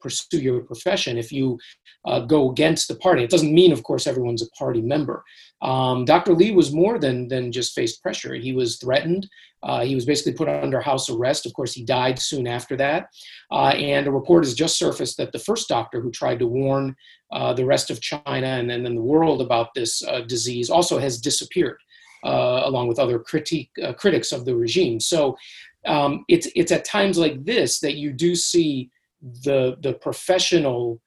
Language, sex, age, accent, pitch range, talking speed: English, male, 30-49, American, 125-170 Hz, 200 wpm